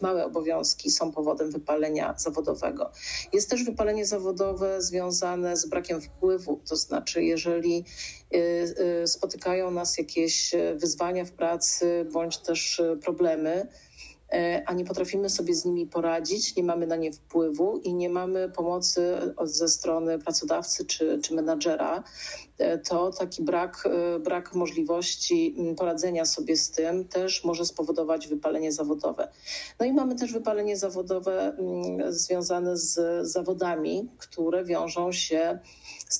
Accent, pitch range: native, 165-185 Hz